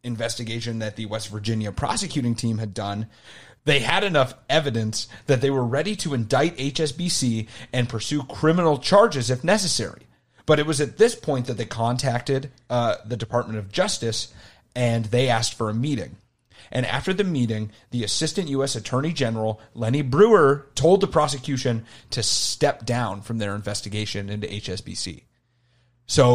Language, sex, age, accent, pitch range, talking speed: English, male, 30-49, American, 110-135 Hz, 155 wpm